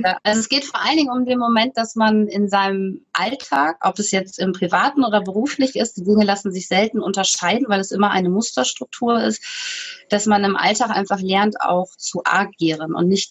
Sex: female